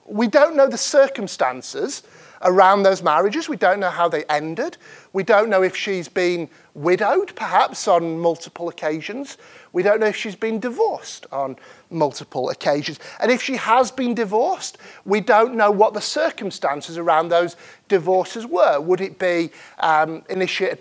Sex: male